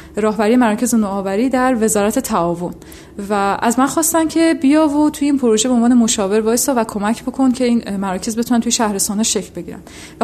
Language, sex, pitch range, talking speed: Persian, female, 215-280 Hz, 190 wpm